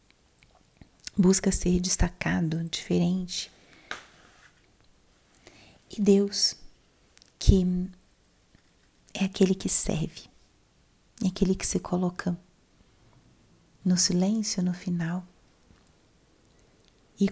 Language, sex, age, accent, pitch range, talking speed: Portuguese, female, 20-39, Brazilian, 185-215 Hz, 75 wpm